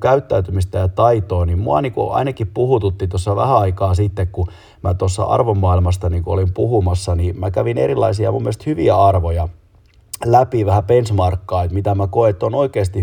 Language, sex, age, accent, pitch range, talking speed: Finnish, male, 30-49, native, 90-105 Hz, 165 wpm